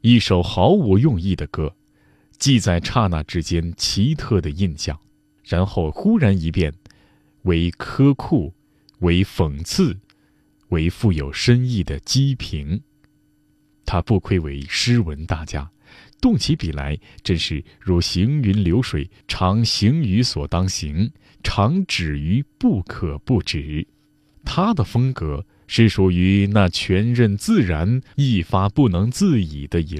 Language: Chinese